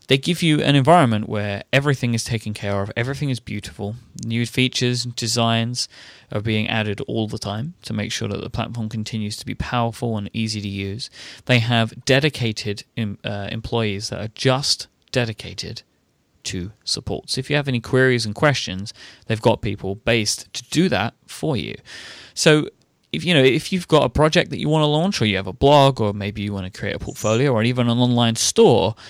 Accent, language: British, English